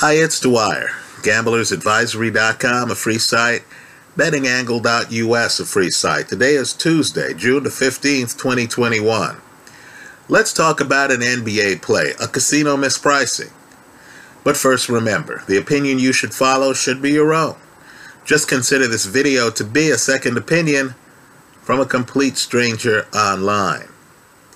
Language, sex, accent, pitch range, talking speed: English, male, American, 120-145 Hz, 130 wpm